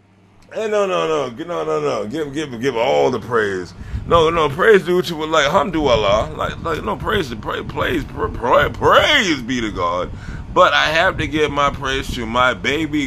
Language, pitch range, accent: English, 100-160 Hz, American